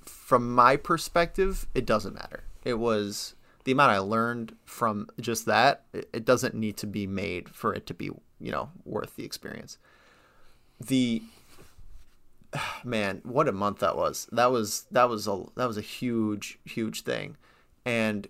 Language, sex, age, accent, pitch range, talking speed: English, male, 30-49, American, 100-125 Hz, 160 wpm